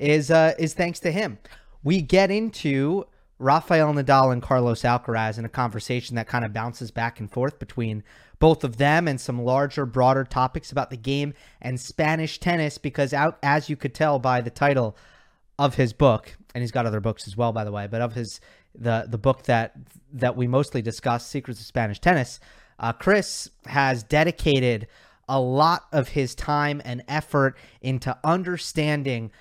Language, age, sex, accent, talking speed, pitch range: English, 30-49, male, American, 180 wpm, 120-155 Hz